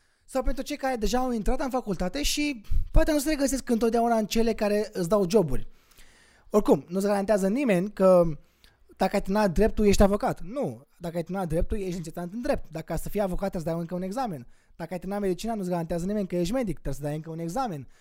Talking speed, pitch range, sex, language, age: 225 wpm, 170-230 Hz, male, Romanian, 20-39